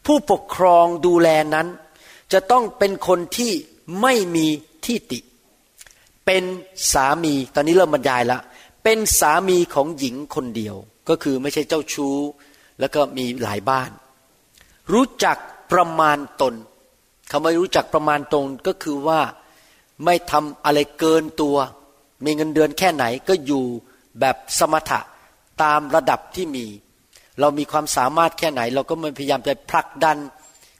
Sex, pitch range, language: male, 140-180 Hz, Thai